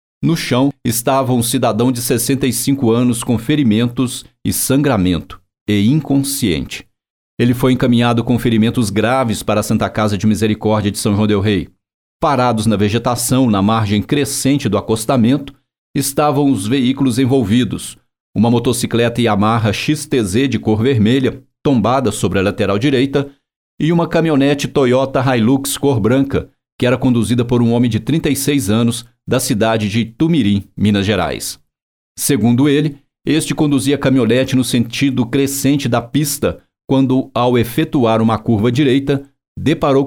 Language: Portuguese